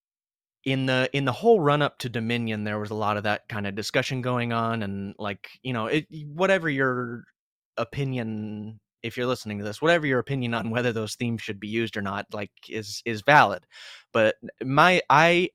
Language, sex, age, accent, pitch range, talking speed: English, male, 30-49, American, 105-130 Hz, 200 wpm